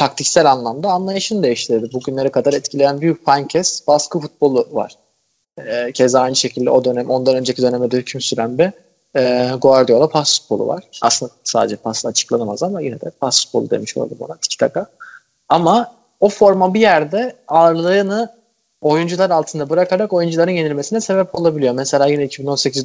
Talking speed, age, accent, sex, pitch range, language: 155 wpm, 30-49, native, male, 130-185 Hz, Turkish